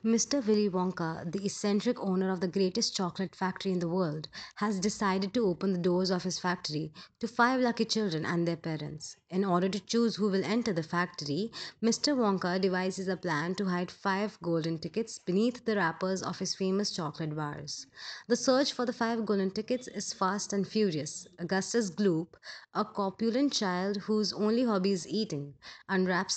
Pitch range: 180-215 Hz